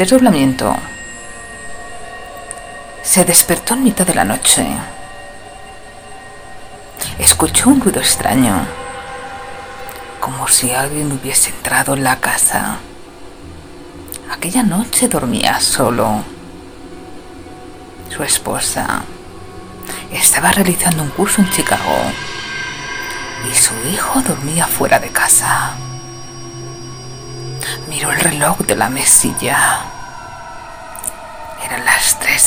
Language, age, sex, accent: Spanish, 50-69, female, Spanish